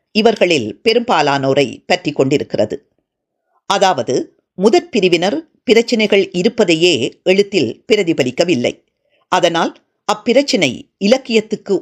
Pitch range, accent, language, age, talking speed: 170-255 Hz, native, Tamil, 50-69, 70 wpm